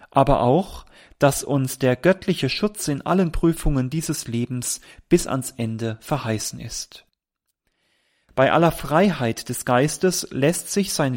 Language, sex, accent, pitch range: German, male, German, 120-160 Hz